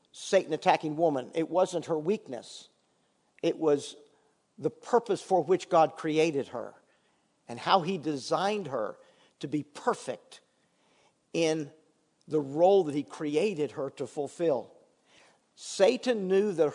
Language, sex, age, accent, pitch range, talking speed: English, male, 50-69, American, 165-235 Hz, 130 wpm